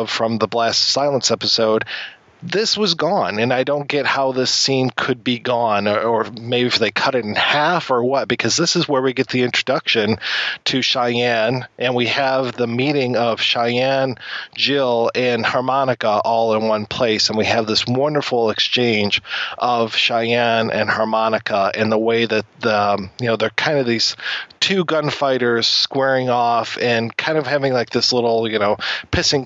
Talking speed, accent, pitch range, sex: 180 wpm, American, 115-135 Hz, male